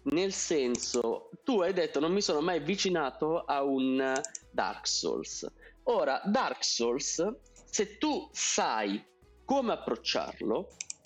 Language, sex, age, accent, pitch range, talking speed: Italian, male, 30-49, native, 135-230 Hz, 120 wpm